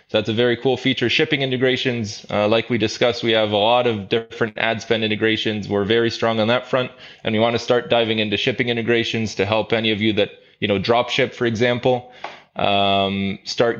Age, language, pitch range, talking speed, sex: 20-39, English, 110-125 Hz, 215 wpm, male